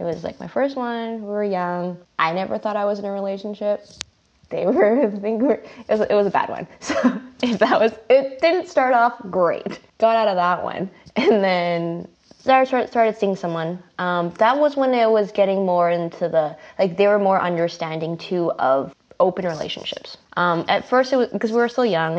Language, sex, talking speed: English, female, 205 wpm